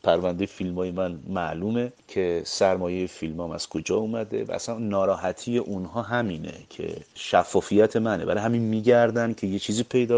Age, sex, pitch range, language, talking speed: 30-49, male, 90-110 Hz, Persian, 145 wpm